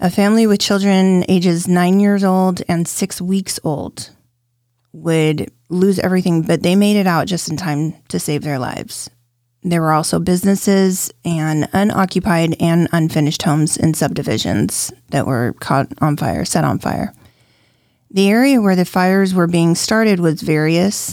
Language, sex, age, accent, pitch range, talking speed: English, female, 30-49, American, 150-185 Hz, 160 wpm